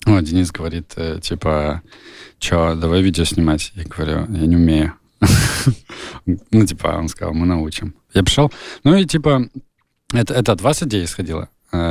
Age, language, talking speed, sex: 20-39, Russian, 150 wpm, male